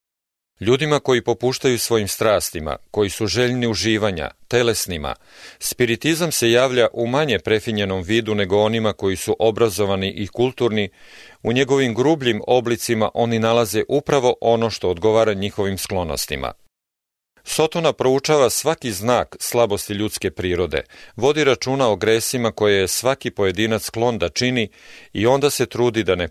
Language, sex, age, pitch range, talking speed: English, male, 40-59, 100-125 Hz, 135 wpm